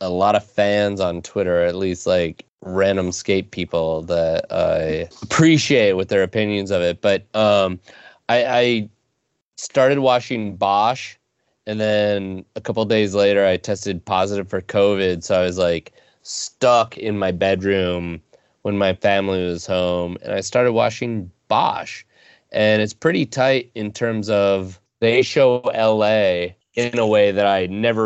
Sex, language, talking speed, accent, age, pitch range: male, English, 155 wpm, American, 30-49, 90-110 Hz